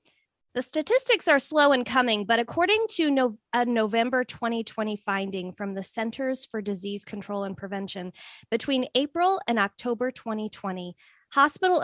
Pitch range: 200-265 Hz